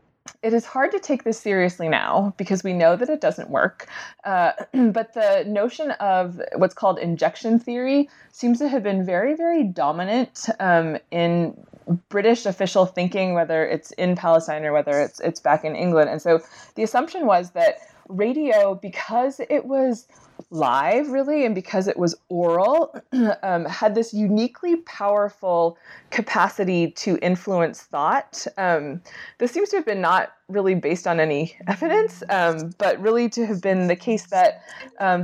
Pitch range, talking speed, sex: 170-240 Hz, 160 wpm, female